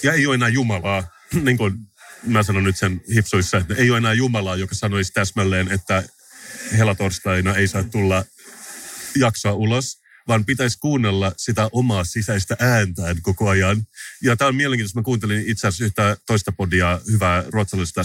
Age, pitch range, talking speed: 30-49, 95-115 Hz, 165 wpm